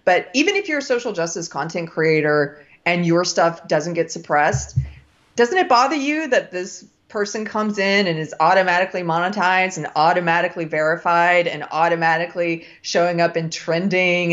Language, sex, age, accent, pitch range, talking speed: English, female, 30-49, American, 165-215 Hz, 155 wpm